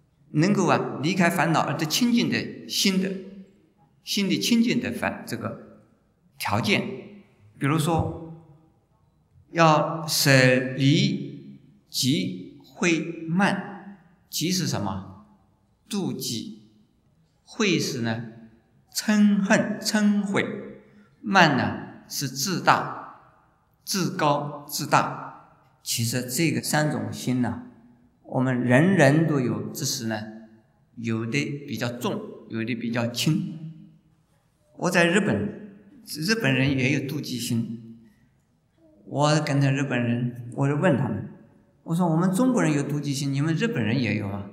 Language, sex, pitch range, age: Chinese, male, 120-165 Hz, 50-69